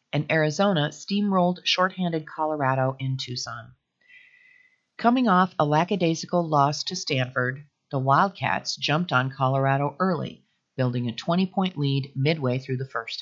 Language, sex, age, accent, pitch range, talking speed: English, female, 40-59, American, 130-170 Hz, 125 wpm